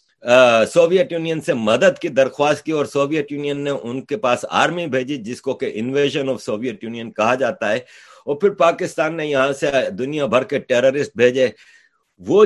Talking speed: 160 wpm